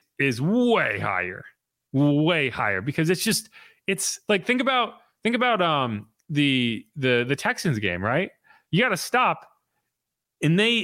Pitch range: 125-200 Hz